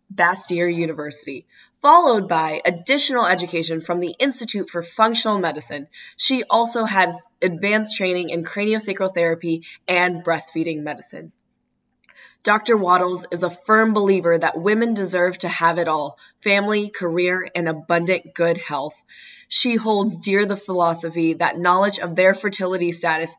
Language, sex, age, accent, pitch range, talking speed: English, female, 20-39, American, 170-210 Hz, 135 wpm